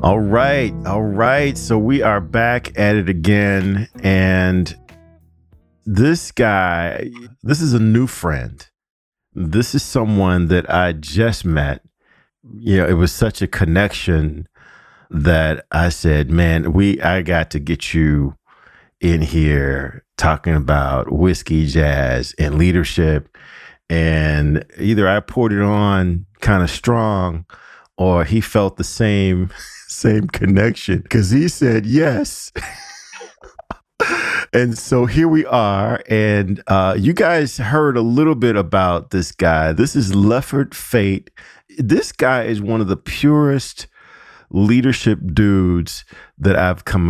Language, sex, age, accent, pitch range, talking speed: English, male, 40-59, American, 80-110 Hz, 135 wpm